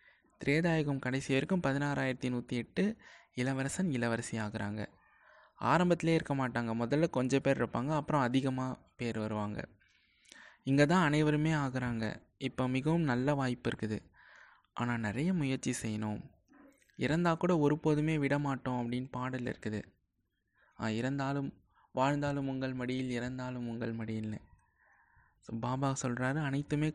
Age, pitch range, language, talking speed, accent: 20-39, 120-145 Hz, Tamil, 110 wpm, native